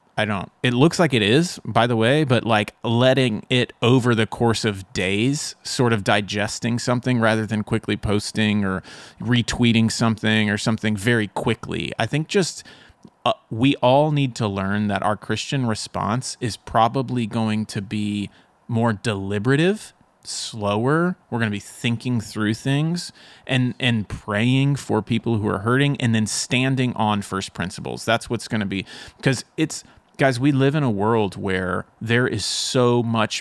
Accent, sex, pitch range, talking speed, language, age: American, male, 105-125 Hz, 170 wpm, English, 30-49